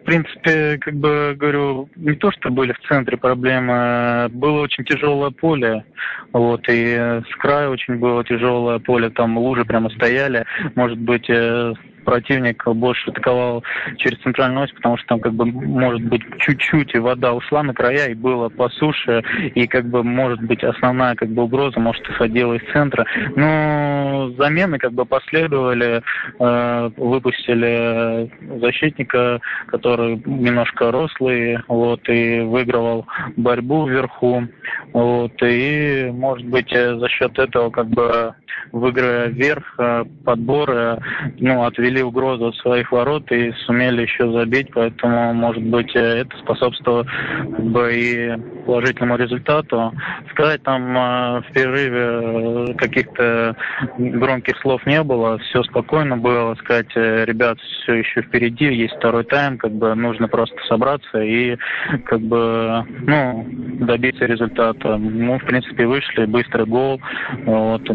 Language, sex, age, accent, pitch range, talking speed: Russian, male, 20-39, native, 115-130 Hz, 135 wpm